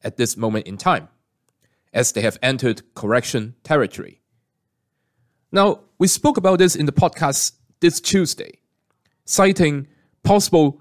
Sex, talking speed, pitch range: male, 130 wpm, 120-170 Hz